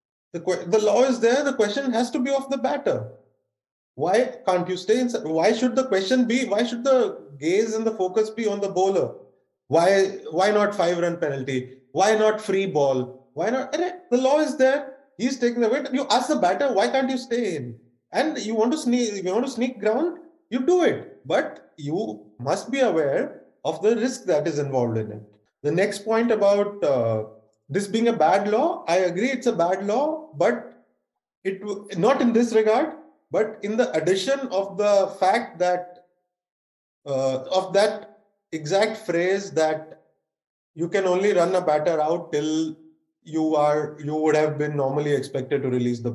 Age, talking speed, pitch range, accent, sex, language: 30-49, 185 wpm, 155-235 Hz, Indian, male, English